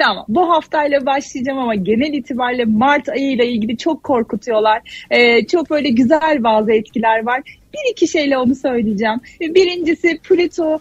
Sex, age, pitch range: female, 40-59, 235-320 Hz